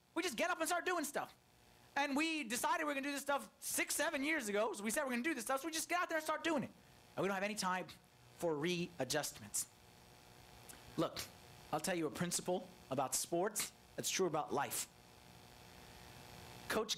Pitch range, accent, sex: 140-215 Hz, American, male